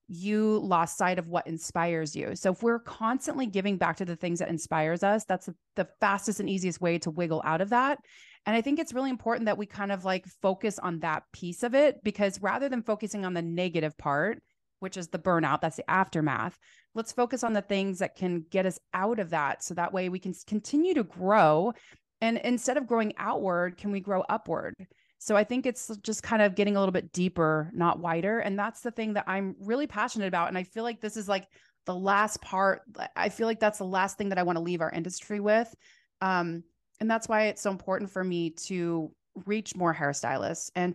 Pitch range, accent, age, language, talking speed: 175-220 Hz, American, 30-49, English, 225 wpm